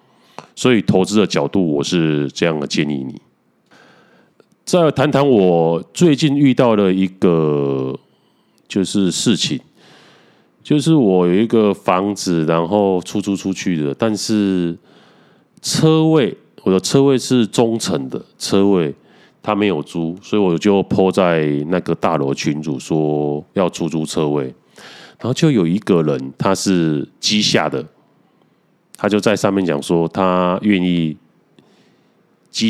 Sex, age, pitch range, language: male, 30-49, 85-115 Hz, Chinese